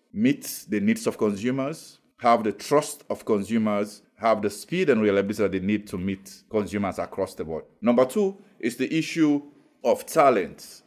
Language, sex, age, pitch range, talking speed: English, male, 50-69, 105-140 Hz, 170 wpm